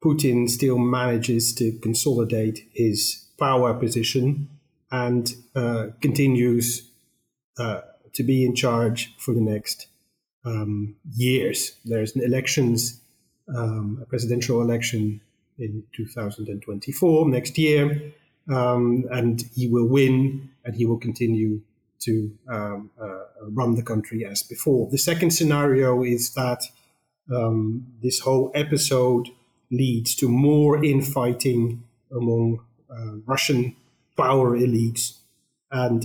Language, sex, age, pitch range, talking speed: English, male, 30-49, 115-135 Hz, 115 wpm